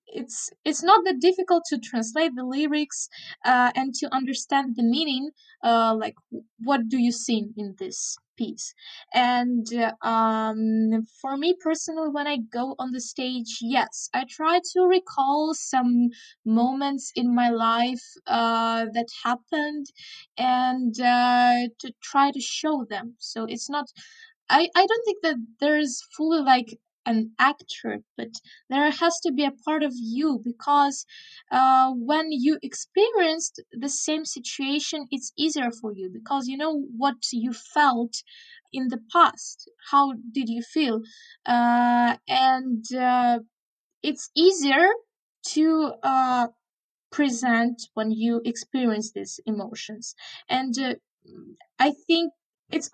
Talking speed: 135 wpm